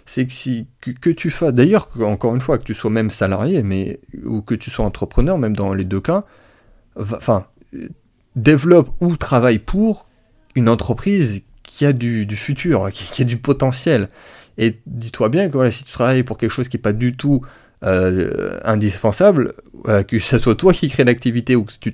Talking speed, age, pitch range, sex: 195 wpm, 30-49, 105-135 Hz, male